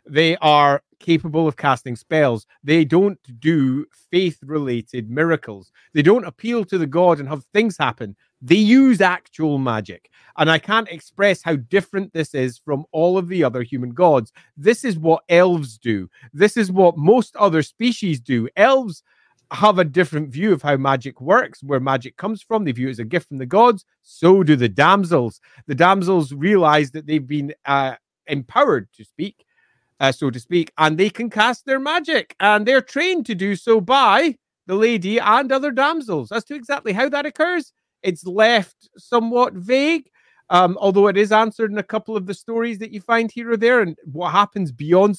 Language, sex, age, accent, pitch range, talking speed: English, male, 30-49, British, 150-215 Hz, 185 wpm